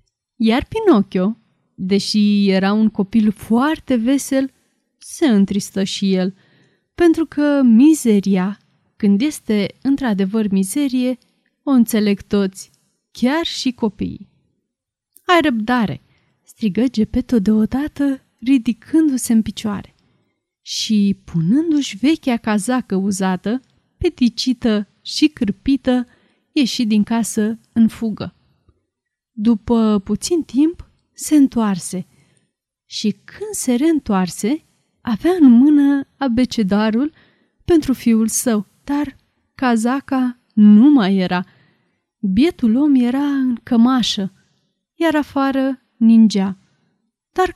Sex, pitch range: female, 205-275 Hz